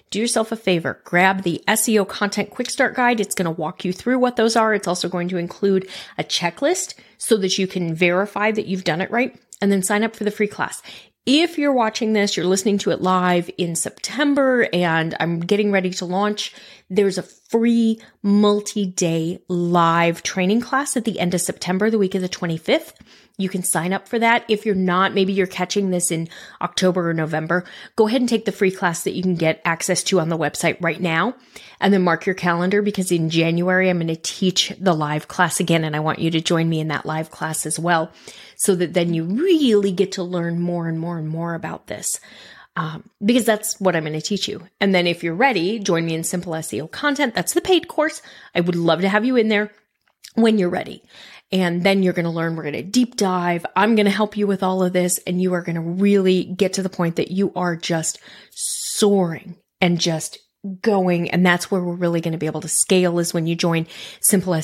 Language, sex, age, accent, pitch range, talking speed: English, female, 30-49, American, 170-205 Hz, 230 wpm